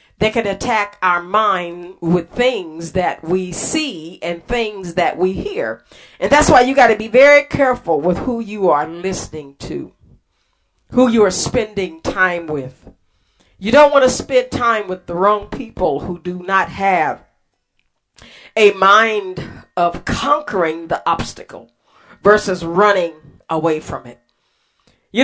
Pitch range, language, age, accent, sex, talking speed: 175-245 Hz, English, 40-59, American, female, 145 wpm